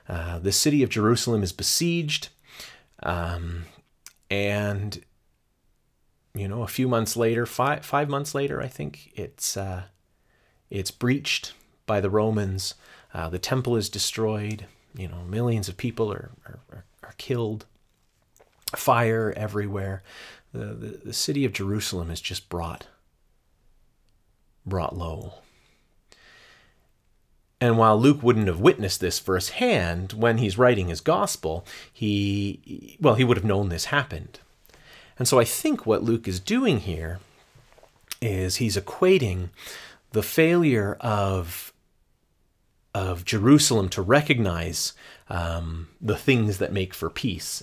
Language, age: English, 30-49